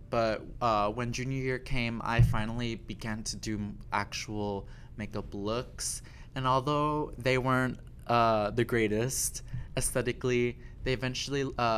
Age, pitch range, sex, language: 20-39, 110-125 Hz, male, English